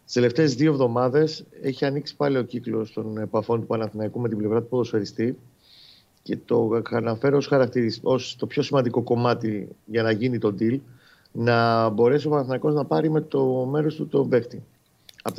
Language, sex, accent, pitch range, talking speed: Greek, male, native, 115-150 Hz, 170 wpm